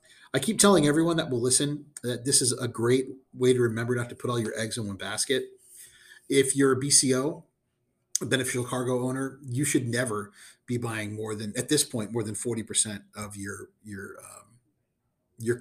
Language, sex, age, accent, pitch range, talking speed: English, male, 30-49, American, 115-135 Hz, 190 wpm